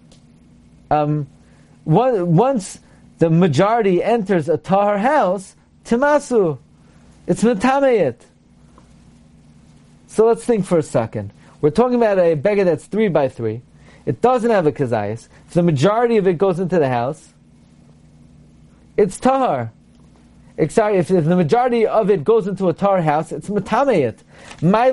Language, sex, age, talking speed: English, male, 40-59, 140 wpm